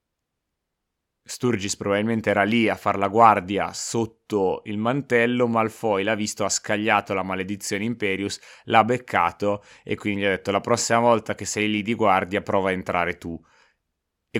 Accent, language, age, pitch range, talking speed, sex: native, Italian, 20-39, 95-115 Hz, 165 wpm, male